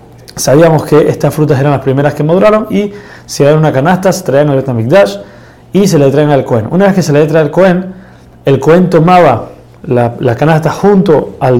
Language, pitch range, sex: Spanish, 135-170 Hz, male